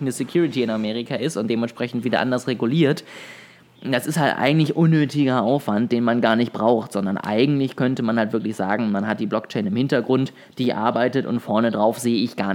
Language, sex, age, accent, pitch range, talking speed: German, male, 20-39, German, 115-140 Hz, 200 wpm